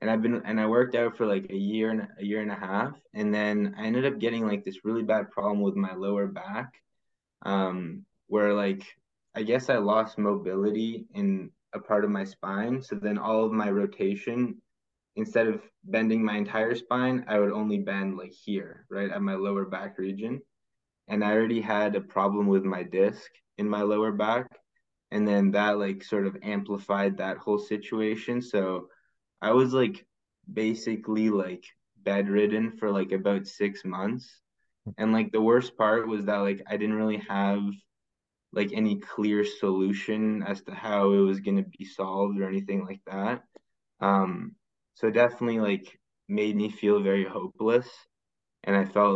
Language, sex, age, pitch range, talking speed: English, male, 20-39, 95-110 Hz, 180 wpm